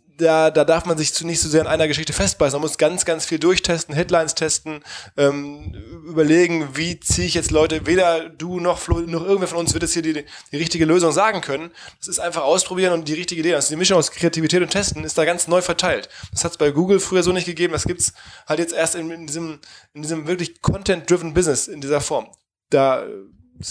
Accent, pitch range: German, 140-170 Hz